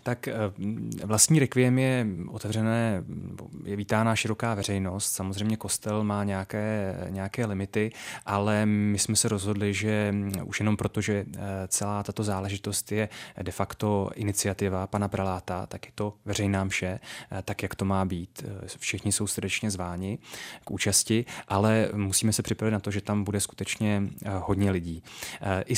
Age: 20-39